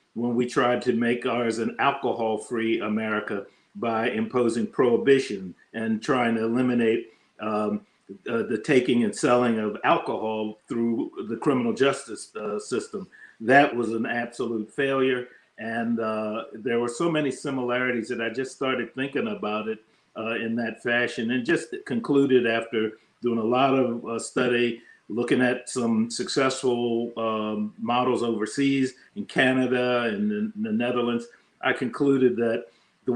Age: 50-69